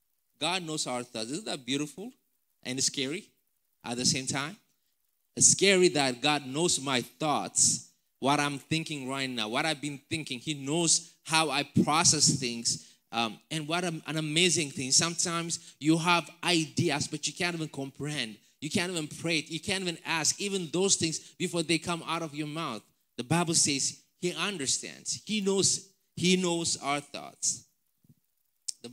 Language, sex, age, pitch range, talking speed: English, male, 20-39, 130-170 Hz, 165 wpm